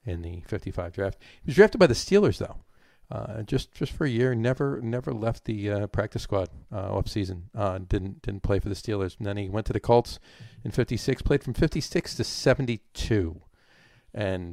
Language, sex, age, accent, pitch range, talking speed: English, male, 50-69, American, 90-115 Hz, 200 wpm